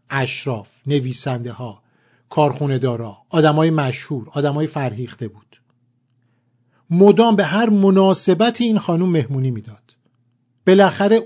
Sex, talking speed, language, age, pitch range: male, 100 wpm, Persian, 50-69, 125-195 Hz